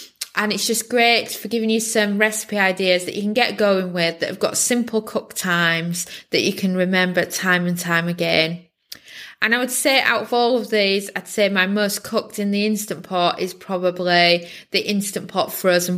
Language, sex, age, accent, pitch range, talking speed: English, female, 20-39, British, 175-215 Hz, 205 wpm